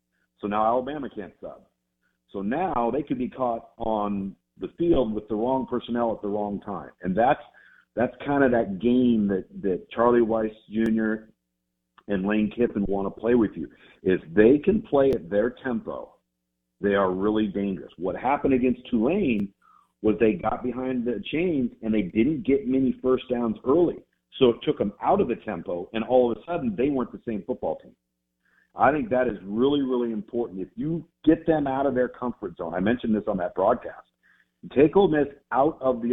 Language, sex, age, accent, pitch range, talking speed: English, male, 50-69, American, 100-125 Hz, 195 wpm